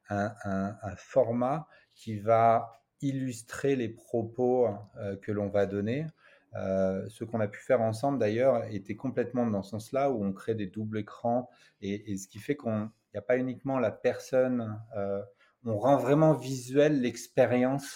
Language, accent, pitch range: French, French, 100-125 Hz